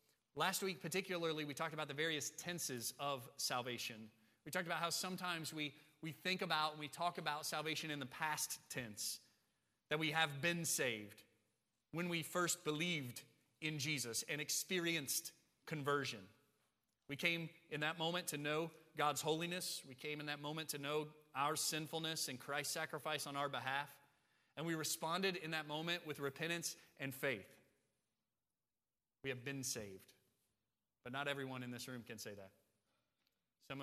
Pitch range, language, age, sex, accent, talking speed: 120-160 Hz, English, 30-49, male, American, 160 wpm